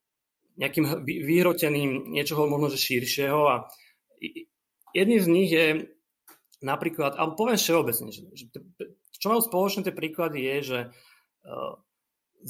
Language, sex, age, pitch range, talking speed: Slovak, male, 30-49, 130-170 Hz, 115 wpm